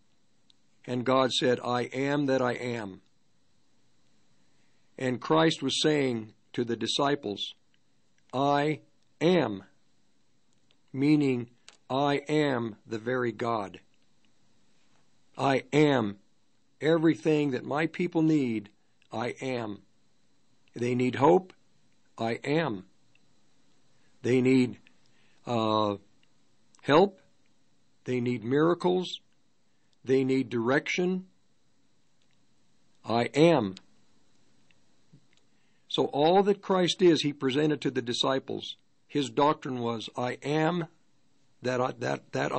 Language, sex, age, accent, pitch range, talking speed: English, male, 60-79, American, 120-150 Hz, 90 wpm